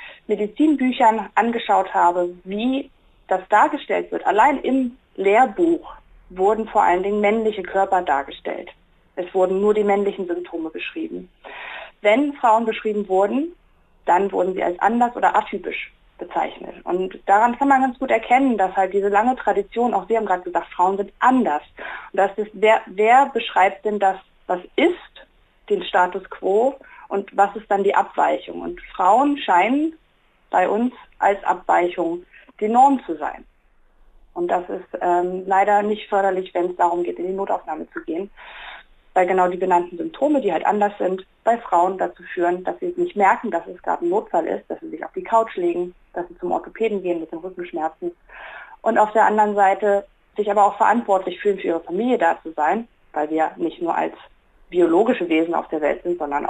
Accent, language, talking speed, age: German, German, 180 wpm, 30-49